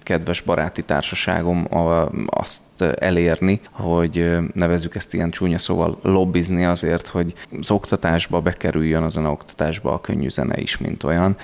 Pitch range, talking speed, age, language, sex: 85-95 Hz, 130 wpm, 20-39, Hungarian, male